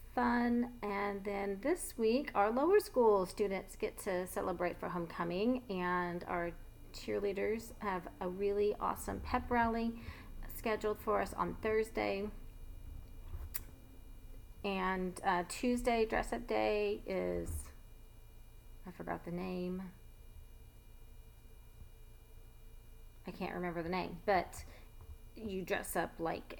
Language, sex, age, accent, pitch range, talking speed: English, female, 30-49, American, 130-200 Hz, 110 wpm